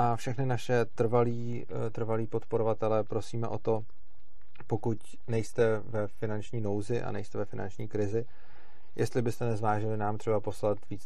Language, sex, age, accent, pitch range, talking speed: Czech, male, 30-49, native, 100-115 Hz, 135 wpm